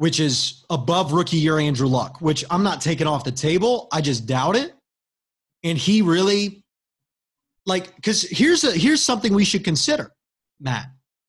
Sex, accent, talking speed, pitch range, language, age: male, American, 165 wpm, 145-195 Hz, English, 30-49